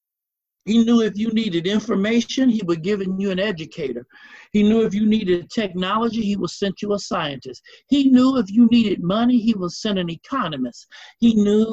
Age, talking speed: 60-79, 190 wpm